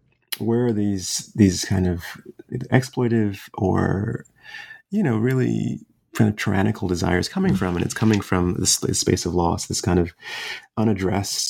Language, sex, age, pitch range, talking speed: English, male, 30-49, 95-120 Hz, 150 wpm